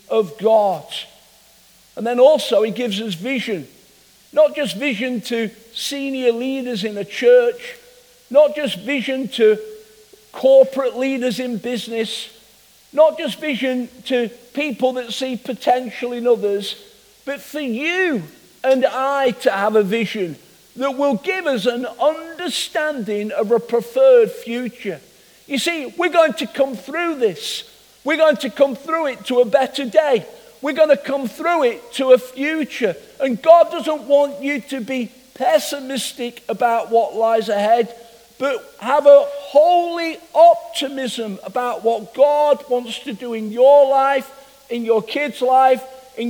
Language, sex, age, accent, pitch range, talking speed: English, male, 50-69, British, 235-290 Hz, 145 wpm